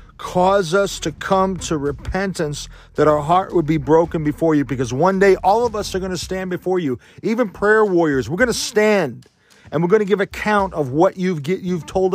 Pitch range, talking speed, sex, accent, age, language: 110-160 Hz, 220 wpm, male, American, 40-59, English